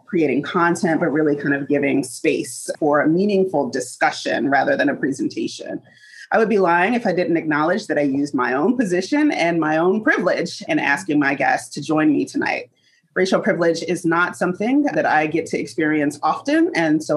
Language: English